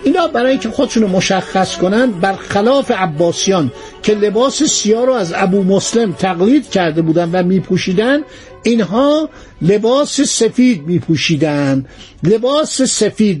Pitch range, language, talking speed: 175-230 Hz, Persian, 130 wpm